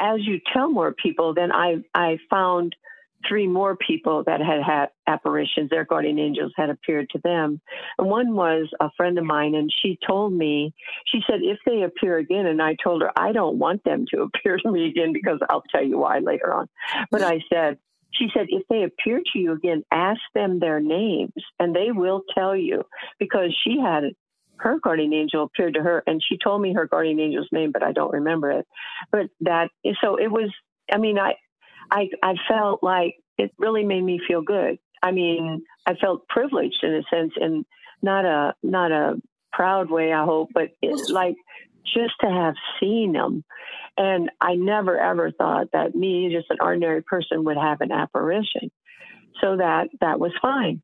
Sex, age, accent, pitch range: female, 50-69, American, 160-200 Hz